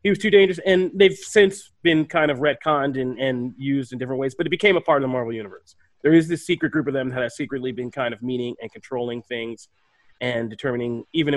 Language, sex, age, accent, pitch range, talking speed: English, male, 30-49, American, 125-160 Hz, 245 wpm